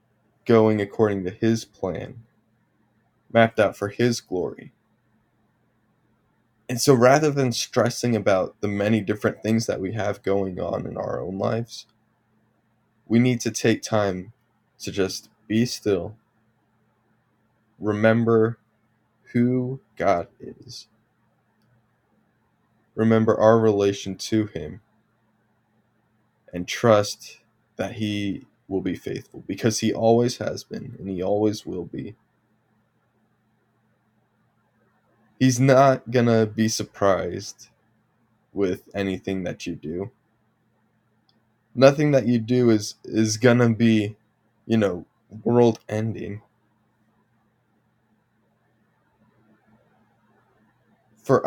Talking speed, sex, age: 100 wpm, male, 20-39